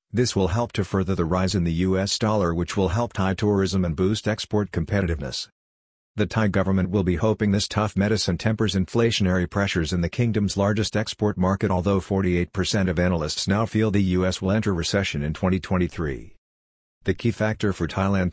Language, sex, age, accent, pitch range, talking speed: English, male, 50-69, American, 90-105 Hz, 185 wpm